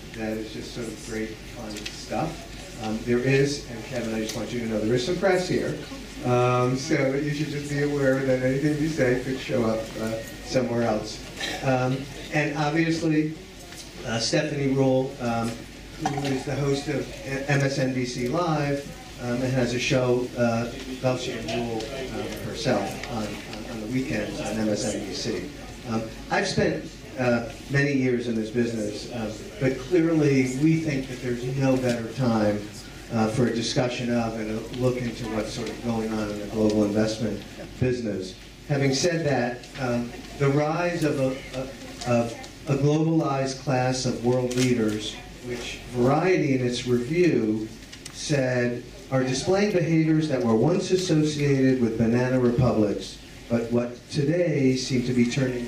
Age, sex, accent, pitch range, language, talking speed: 50-69, male, American, 115-140 Hz, English, 160 wpm